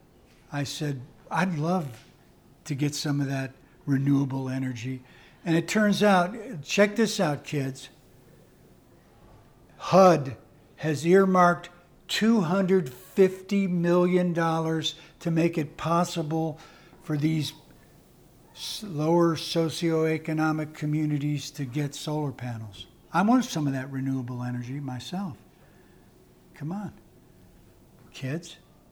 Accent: American